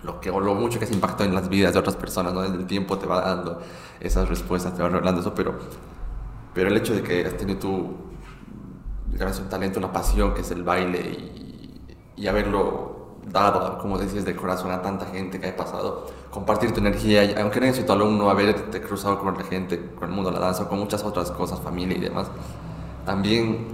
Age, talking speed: 20-39, 215 wpm